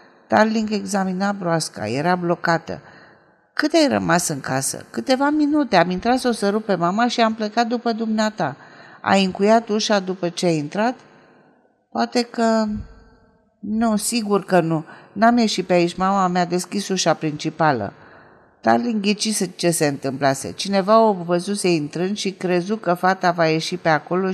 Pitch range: 155-215 Hz